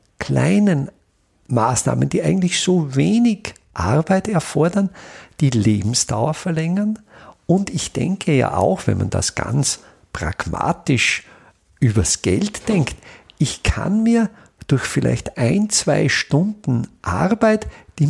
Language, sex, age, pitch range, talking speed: German, male, 50-69, 135-195 Hz, 115 wpm